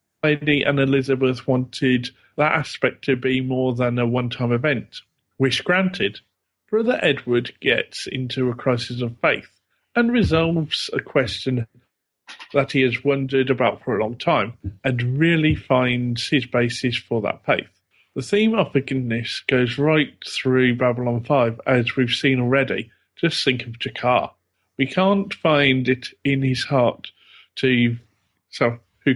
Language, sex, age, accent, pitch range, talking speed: English, male, 40-59, British, 125-150 Hz, 145 wpm